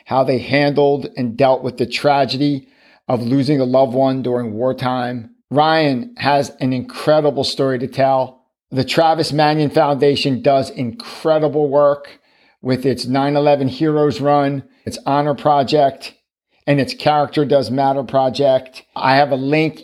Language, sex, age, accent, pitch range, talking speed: English, male, 50-69, American, 130-150 Hz, 140 wpm